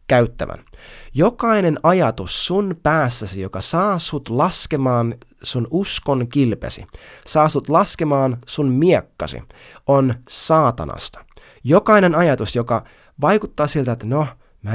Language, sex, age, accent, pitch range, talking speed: Finnish, male, 20-39, native, 120-165 Hz, 110 wpm